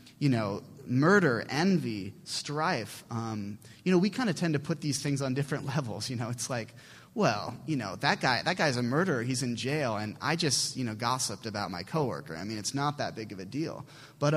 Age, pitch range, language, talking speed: 30-49, 120-155 Hz, English, 225 wpm